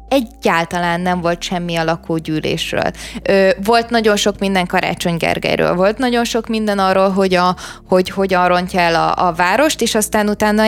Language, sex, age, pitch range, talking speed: Hungarian, female, 20-39, 180-220 Hz, 165 wpm